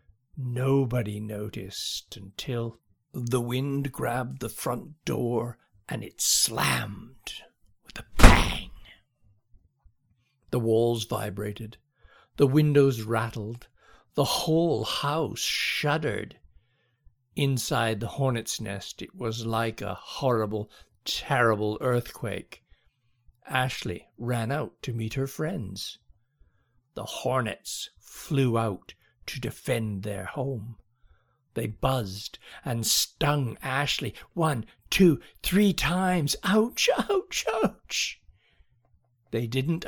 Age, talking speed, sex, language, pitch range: 60-79, 100 wpm, male, English, 110-145 Hz